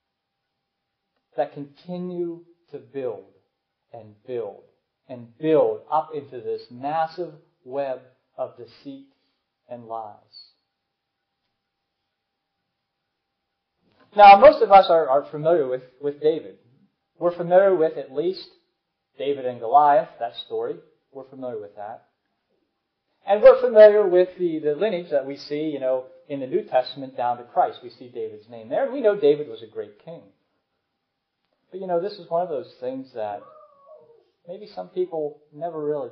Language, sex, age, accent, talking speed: English, male, 40-59, American, 145 wpm